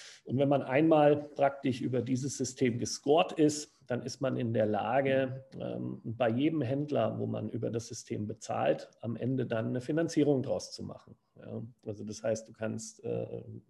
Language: English